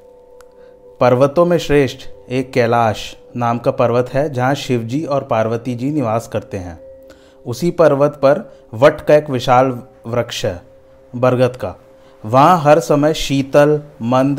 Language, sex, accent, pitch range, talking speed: Hindi, male, native, 125-145 Hz, 140 wpm